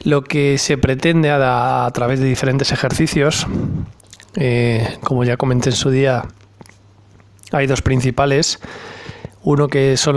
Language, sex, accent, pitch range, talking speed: Spanish, male, Spanish, 120-145 Hz, 135 wpm